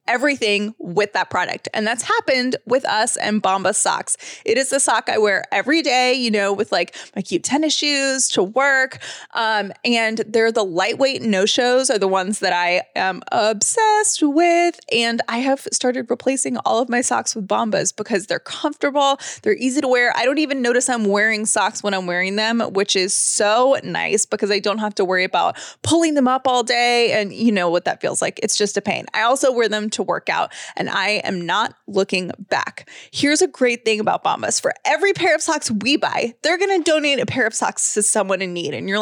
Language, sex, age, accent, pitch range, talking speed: English, female, 20-39, American, 210-285 Hz, 215 wpm